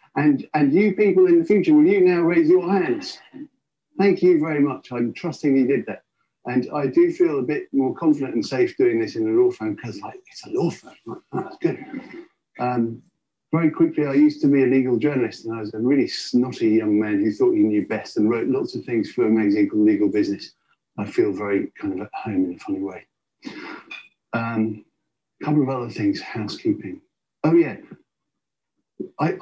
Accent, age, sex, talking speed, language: British, 50-69, male, 210 wpm, English